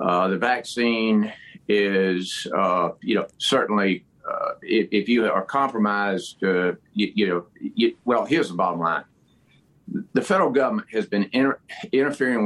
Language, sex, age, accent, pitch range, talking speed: English, male, 50-69, American, 100-125 Hz, 140 wpm